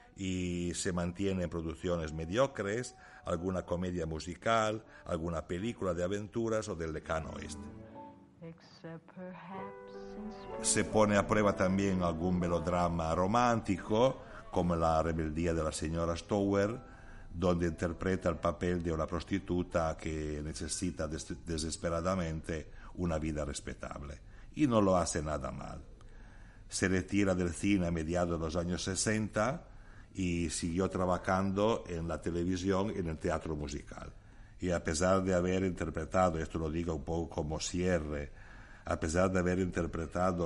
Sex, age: male, 60-79